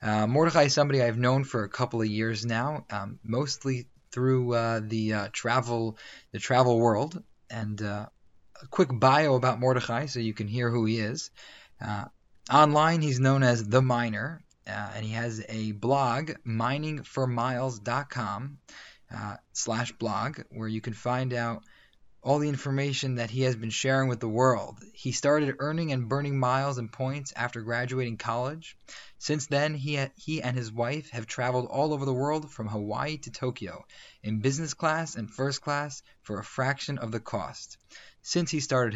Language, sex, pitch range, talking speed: English, male, 115-140 Hz, 170 wpm